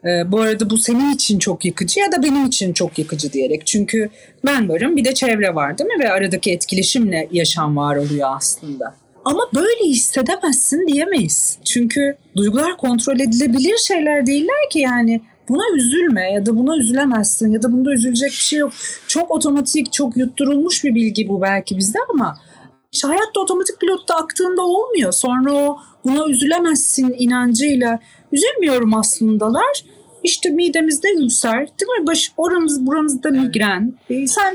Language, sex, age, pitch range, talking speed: Turkish, female, 40-59, 220-320 Hz, 150 wpm